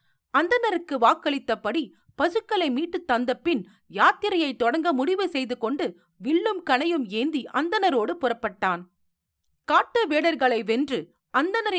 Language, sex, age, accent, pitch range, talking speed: Tamil, female, 40-59, native, 230-335 Hz, 70 wpm